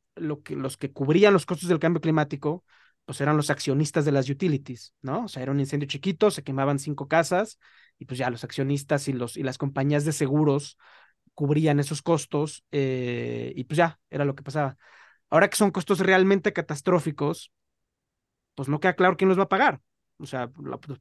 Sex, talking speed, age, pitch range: male, 195 wpm, 30-49, 140-175 Hz